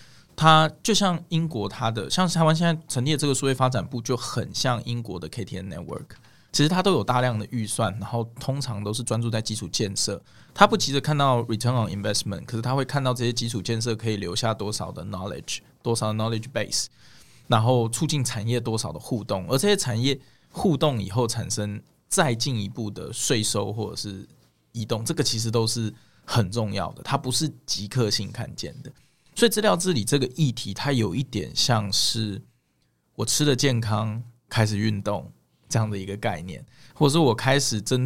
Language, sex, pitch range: Chinese, male, 110-135 Hz